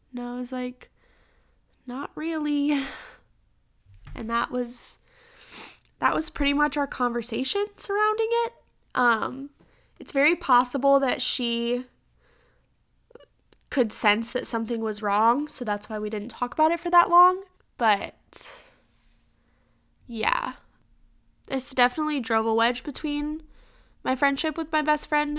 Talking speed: 130 wpm